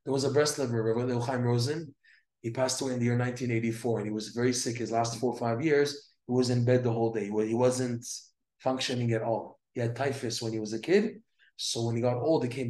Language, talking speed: English, 250 wpm